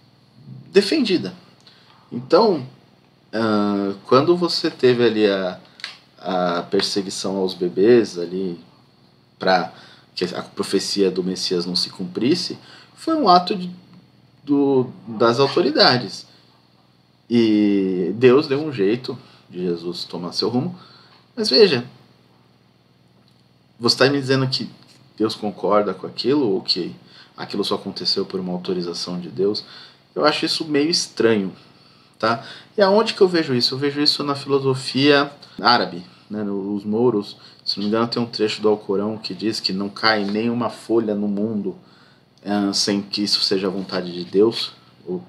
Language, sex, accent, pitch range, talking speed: Portuguese, male, Brazilian, 90-130 Hz, 140 wpm